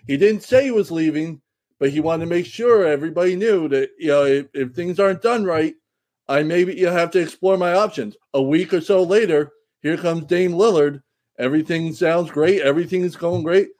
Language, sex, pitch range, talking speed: English, male, 140-200 Hz, 205 wpm